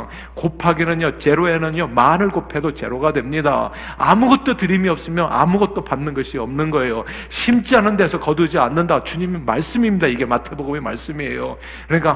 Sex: male